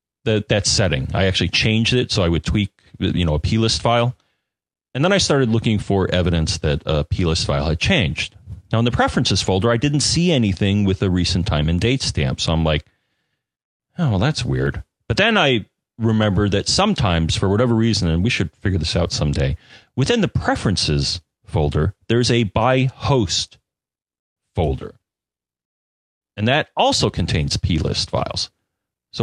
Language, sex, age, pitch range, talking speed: English, male, 40-59, 85-120 Hz, 170 wpm